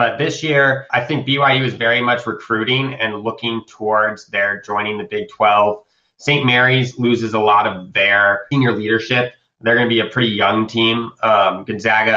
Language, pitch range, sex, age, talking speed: English, 105-125 Hz, male, 20-39, 180 wpm